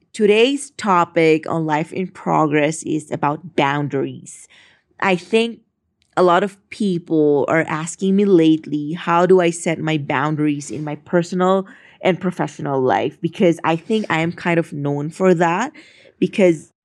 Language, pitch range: English, 155-190 Hz